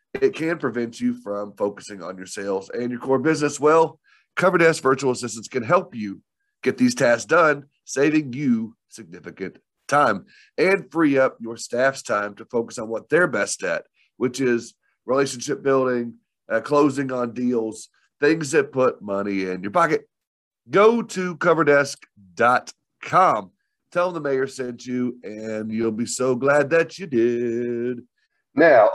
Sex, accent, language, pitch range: male, American, English, 115-150 Hz